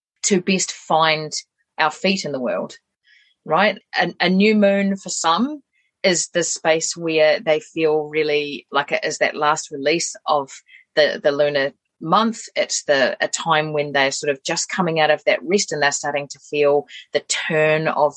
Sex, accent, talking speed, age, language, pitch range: female, Australian, 180 wpm, 30-49, English, 150-195 Hz